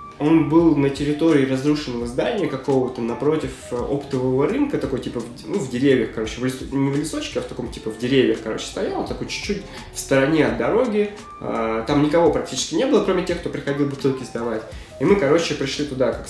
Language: Russian